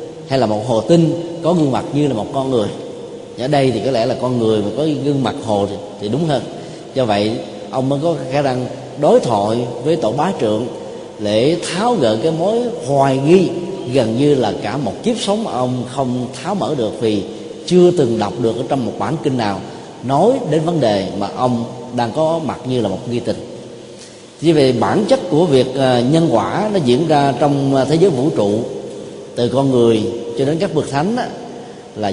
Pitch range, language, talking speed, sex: 115-155 Hz, Vietnamese, 210 wpm, male